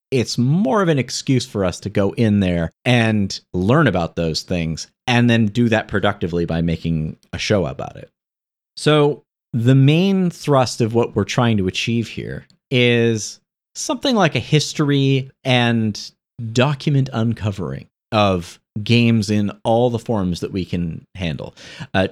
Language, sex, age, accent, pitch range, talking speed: English, male, 40-59, American, 95-130 Hz, 155 wpm